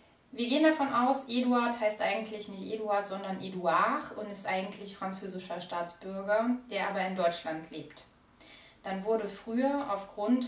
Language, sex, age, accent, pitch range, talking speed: German, female, 30-49, German, 195-245 Hz, 145 wpm